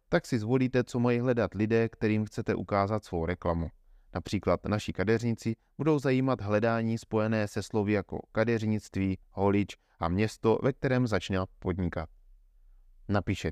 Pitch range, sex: 90-115 Hz, male